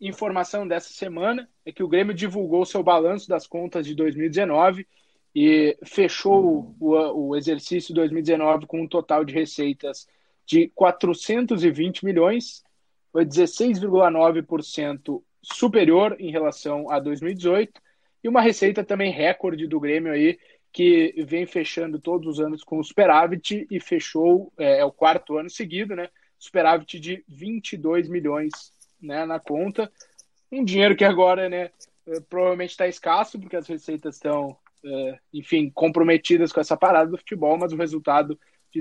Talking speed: 145 wpm